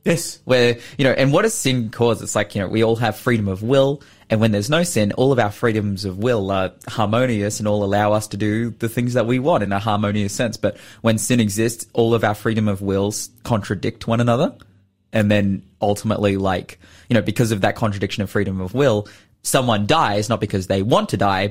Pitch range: 100-125 Hz